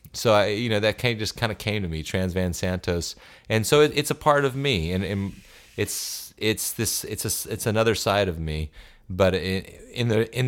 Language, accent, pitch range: English, American, 85-100 Hz